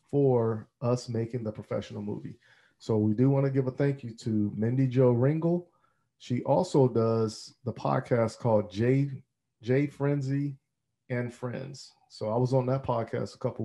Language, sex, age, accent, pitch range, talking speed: English, male, 40-59, American, 115-135 Hz, 165 wpm